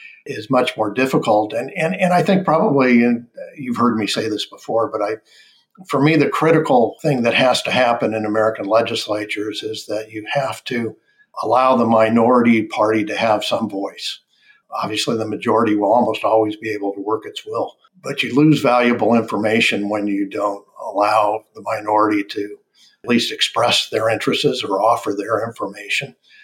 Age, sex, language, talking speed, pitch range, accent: 60-79, male, English, 175 wpm, 110-150 Hz, American